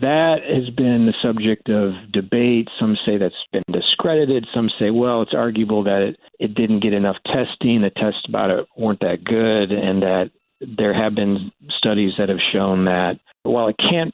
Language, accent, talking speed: English, American, 185 wpm